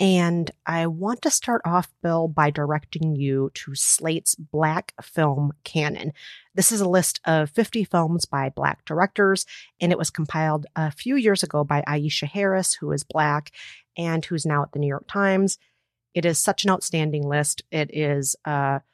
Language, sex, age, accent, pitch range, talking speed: English, female, 30-49, American, 150-195 Hz, 175 wpm